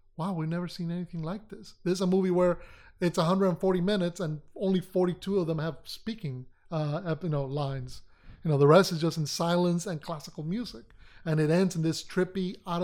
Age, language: 30-49, English